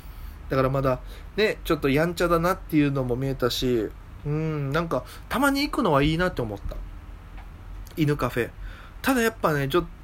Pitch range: 125-170 Hz